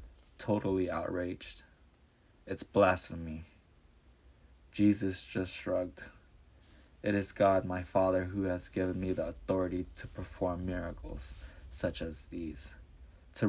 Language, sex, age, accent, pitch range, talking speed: English, male, 20-39, American, 80-105 Hz, 110 wpm